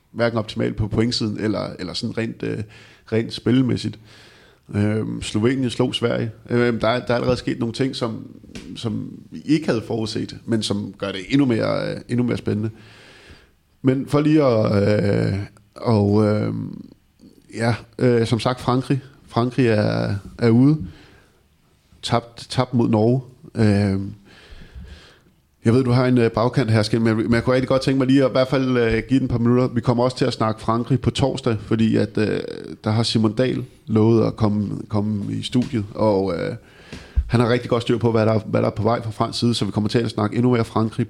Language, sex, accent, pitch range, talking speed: Danish, male, native, 110-125 Hz, 195 wpm